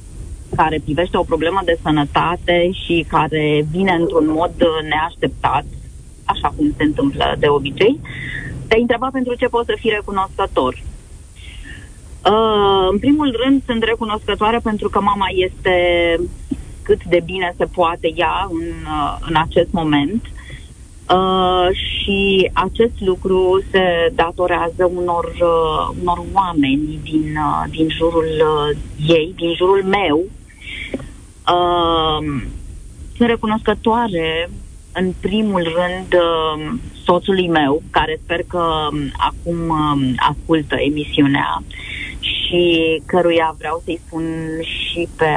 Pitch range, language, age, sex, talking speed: 155-185 Hz, Romanian, 30-49, female, 105 wpm